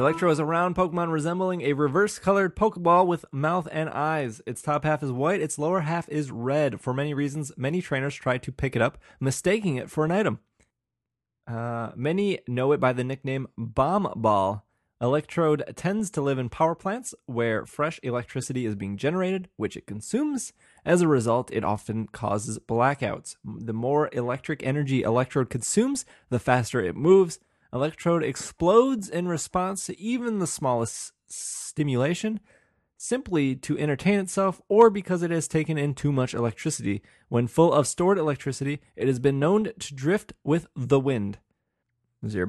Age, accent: 20-39, American